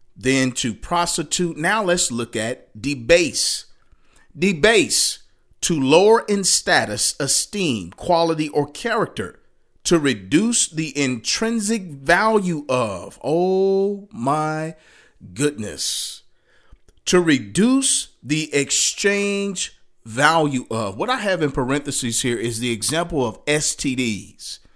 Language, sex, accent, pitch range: English, male, American, 130-180 Hz